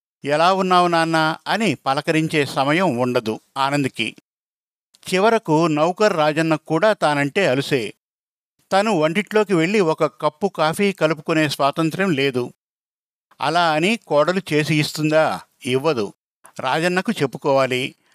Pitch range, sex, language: 145-180 Hz, male, Telugu